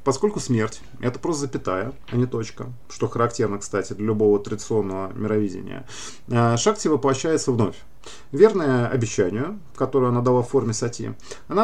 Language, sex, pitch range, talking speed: Russian, male, 110-135 Hz, 145 wpm